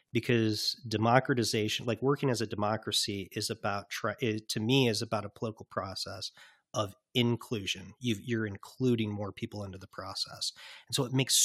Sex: male